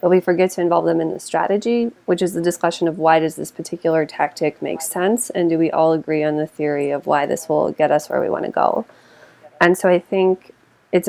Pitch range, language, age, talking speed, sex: 160-185 Hz, English, 20-39, 245 wpm, female